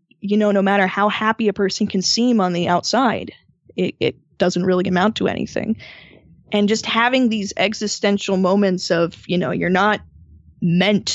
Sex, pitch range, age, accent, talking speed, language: female, 180-205 Hz, 10-29, American, 170 wpm, English